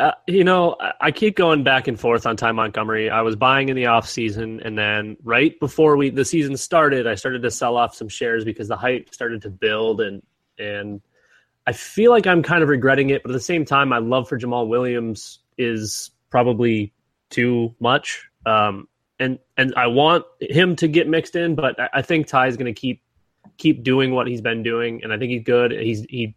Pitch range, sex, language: 115-140 Hz, male, English